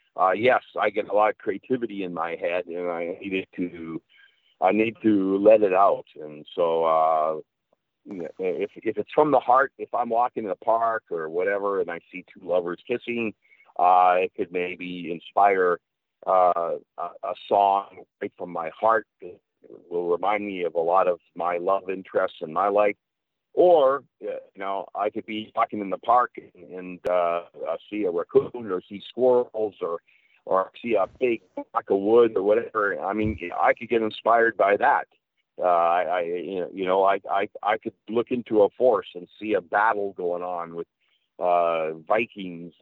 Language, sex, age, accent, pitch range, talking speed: English, male, 40-59, American, 90-125 Hz, 180 wpm